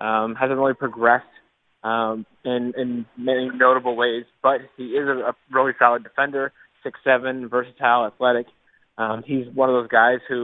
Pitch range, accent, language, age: 115-125 Hz, American, English, 20-39